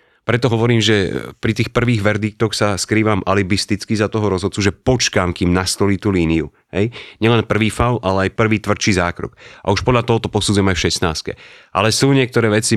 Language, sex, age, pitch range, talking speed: Slovak, male, 30-49, 95-115 Hz, 190 wpm